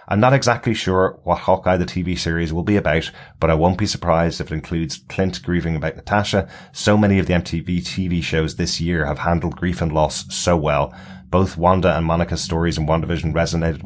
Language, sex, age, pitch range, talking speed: English, male, 20-39, 80-95 Hz, 210 wpm